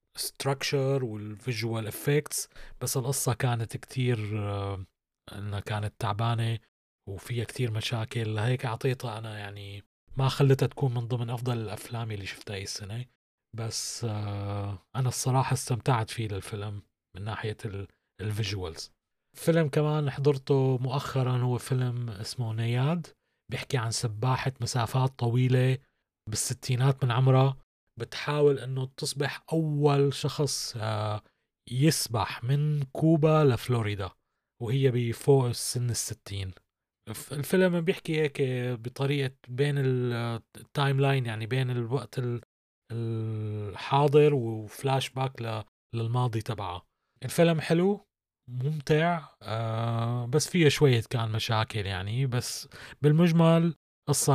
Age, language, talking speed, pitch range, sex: 30-49, Arabic, 100 wpm, 110-135 Hz, male